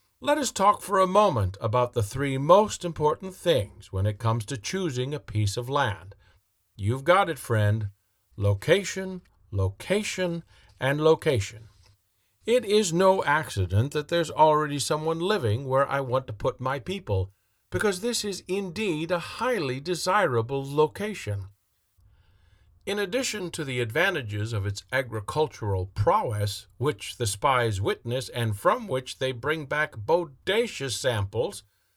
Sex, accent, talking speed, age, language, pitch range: male, American, 140 wpm, 50-69, English, 105-170 Hz